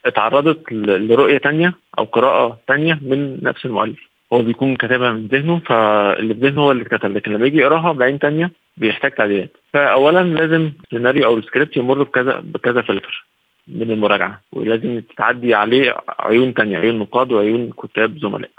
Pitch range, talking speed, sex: 110-140 Hz, 160 wpm, male